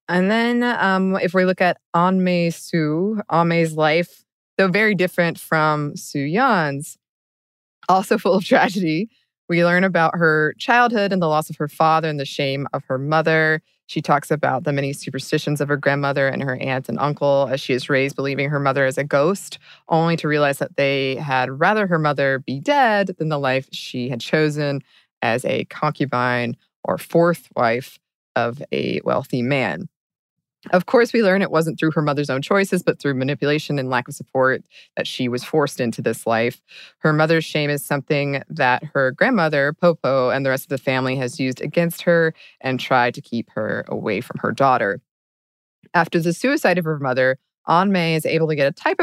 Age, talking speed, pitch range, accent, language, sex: 20-39, 190 wpm, 135-175 Hz, American, English, female